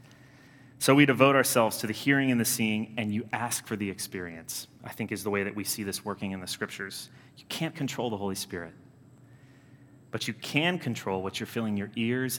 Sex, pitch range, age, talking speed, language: male, 105-135 Hz, 30-49, 215 wpm, English